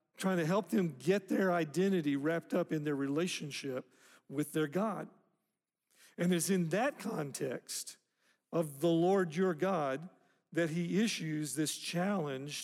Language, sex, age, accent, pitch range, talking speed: English, male, 50-69, American, 145-185 Hz, 140 wpm